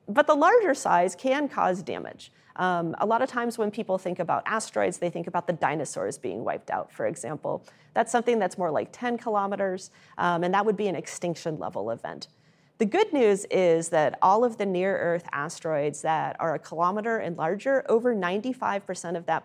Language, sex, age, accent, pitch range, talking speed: English, female, 40-59, American, 165-240 Hz, 190 wpm